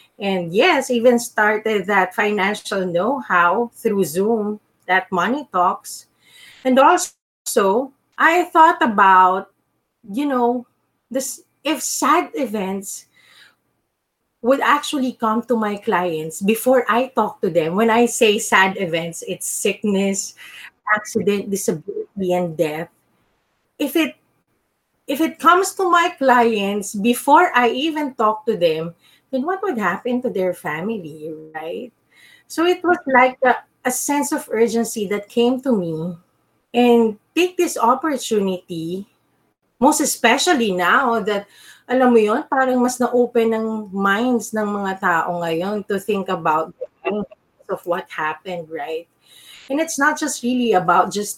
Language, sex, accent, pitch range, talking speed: English, female, Filipino, 195-265 Hz, 135 wpm